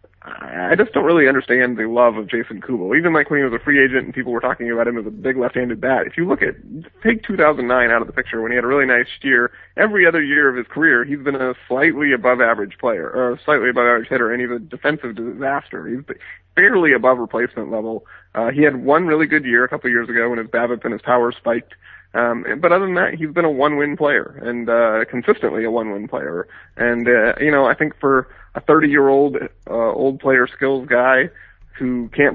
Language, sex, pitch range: English, male, 120-135 Hz